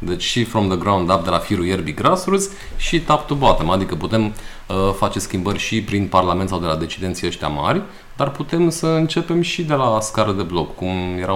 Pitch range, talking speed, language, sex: 90-115 Hz, 215 wpm, Romanian, male